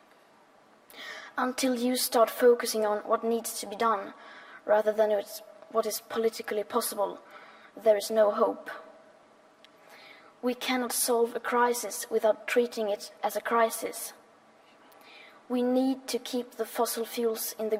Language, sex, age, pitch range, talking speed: Danish, female, 20-39, 215-245 Hz, 135 wpm